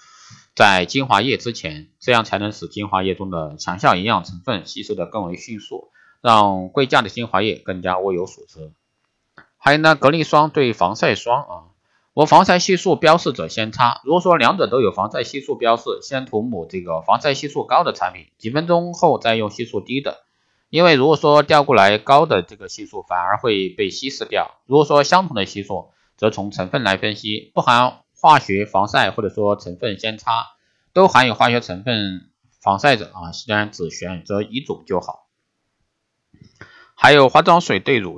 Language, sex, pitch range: Chinese, male, 95-145 Hz